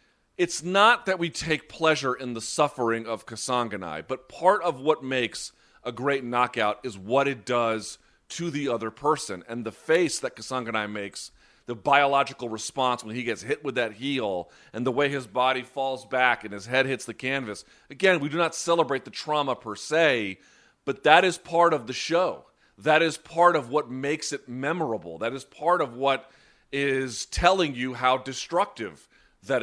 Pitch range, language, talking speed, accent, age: 120-155 Hz, English, 185 wpm, American, 40-59